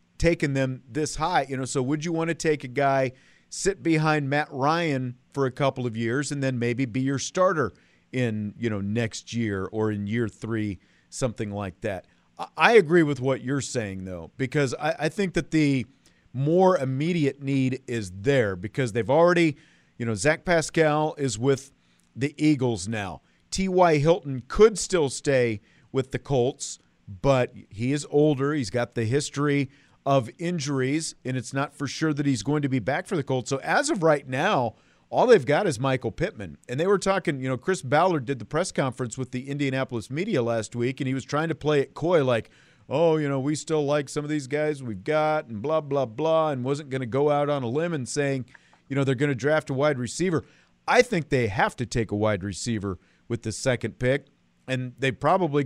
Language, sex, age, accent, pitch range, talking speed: English, male, 40-59, American, 120-155 Hz, 210 wpm